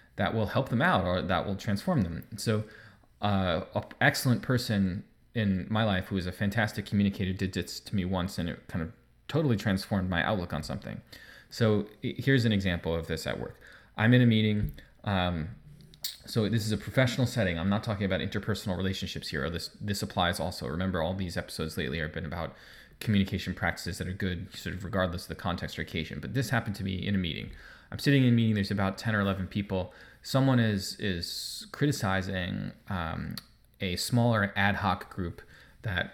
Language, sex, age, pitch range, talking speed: English, male, 20-39, 90-115 Hz, 200 wpm